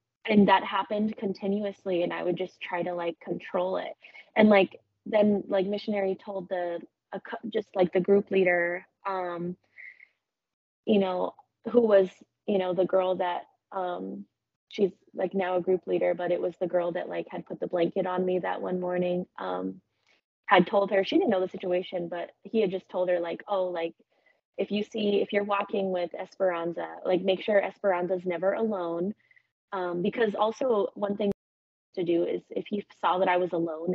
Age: 20-39